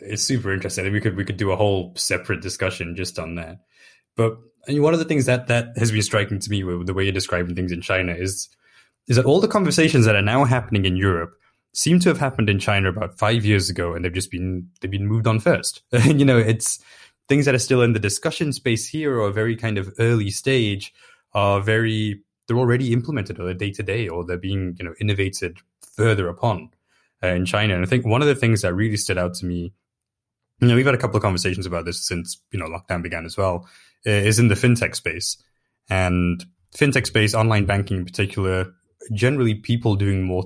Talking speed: 230 wpm